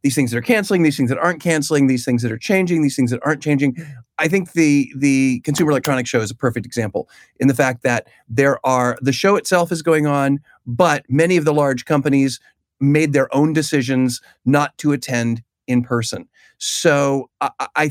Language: English